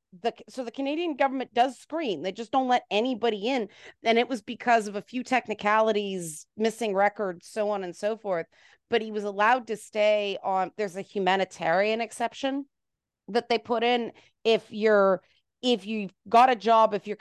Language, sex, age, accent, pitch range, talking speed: English, female, 30-49, American, 195-260 Hz, 180 wpm